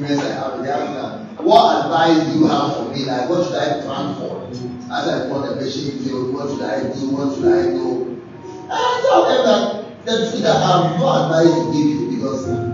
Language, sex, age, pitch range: English, male, 30-49, 150-210 Hz